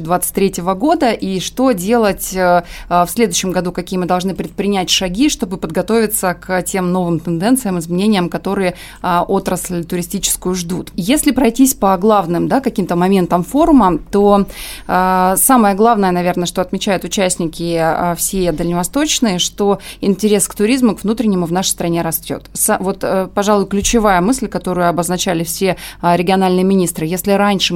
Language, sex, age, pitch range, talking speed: Russian, female, 20-39, 180-205 Hz, 135 wpm